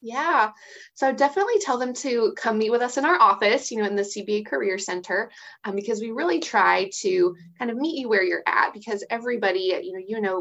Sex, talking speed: female, 220 wpm